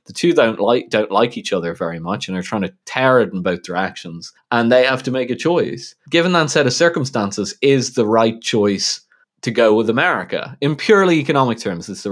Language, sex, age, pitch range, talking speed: English, male, 20-39, 95-135 Hz, 225 wpm